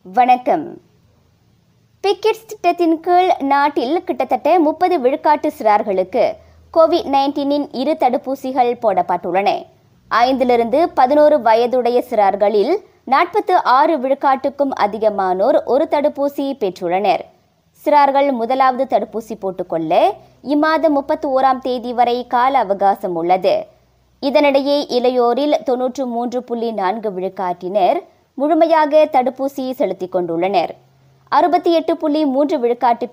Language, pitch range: Tamil, 215-310 Hz